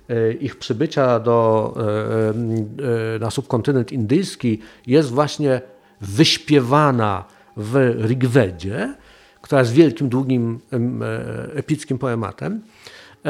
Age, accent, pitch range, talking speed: 50-69, native, 120-165 Hz, 75 wpm